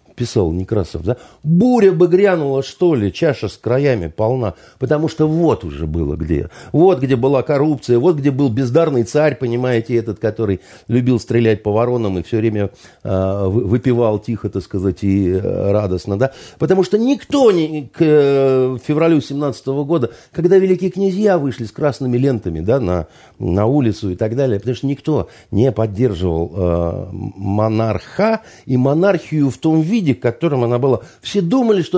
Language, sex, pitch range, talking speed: Russian, male, 110-155 Hz, 165 wpm